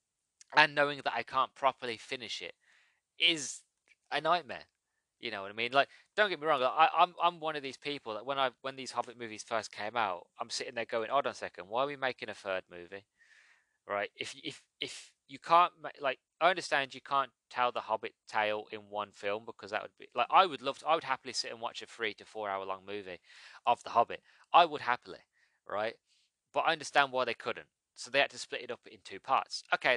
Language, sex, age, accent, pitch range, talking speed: English, male, 20-39, British, 105-135 Hz, 240 wpm